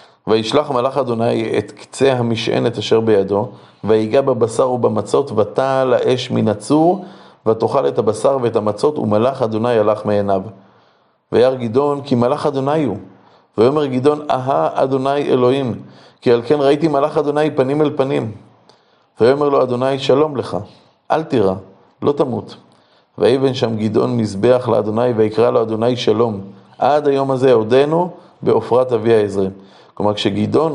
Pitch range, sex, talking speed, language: 110-140 Hz, male, 140 wpm, Hebrew